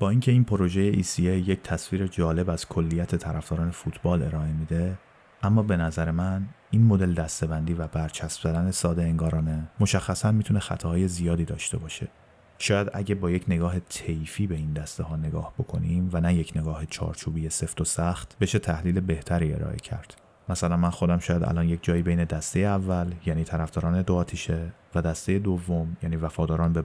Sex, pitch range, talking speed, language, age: male, 80-95 Hz, 170 wpm, Persian, 30-49